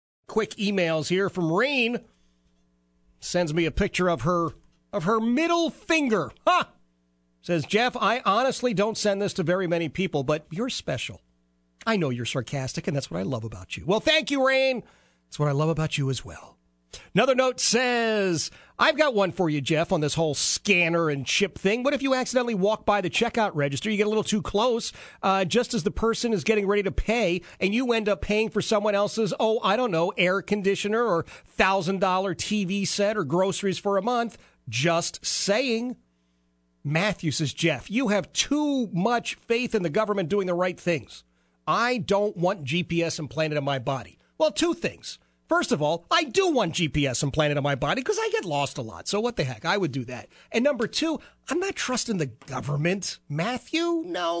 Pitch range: 150-225 Hz